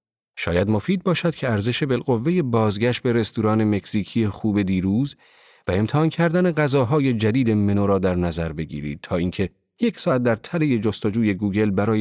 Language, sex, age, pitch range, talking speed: Persian, male, 40-59, 95-135 Hz, 155 wpm